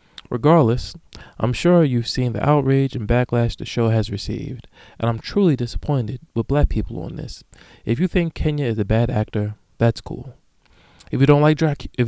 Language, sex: English, male